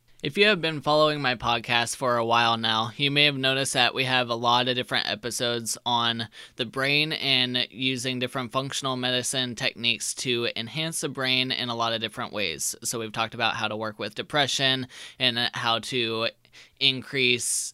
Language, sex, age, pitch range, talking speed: English, male, 20-39, 120-140 Hz, 185 wpm